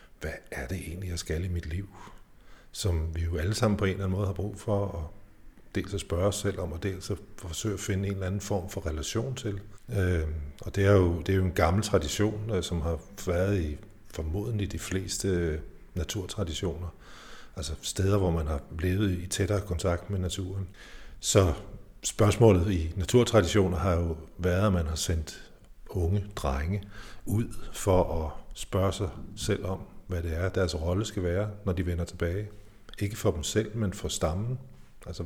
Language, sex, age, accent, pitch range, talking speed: Danish, male, 60-79, native, 90-105 Hz, 185 wpm